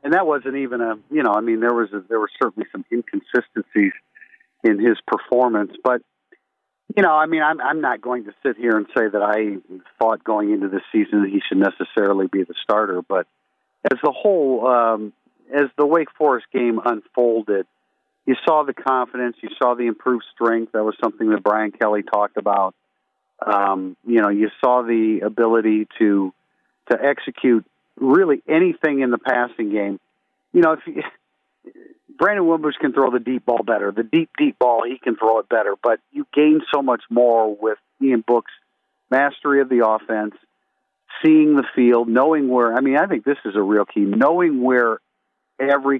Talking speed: 185 wpm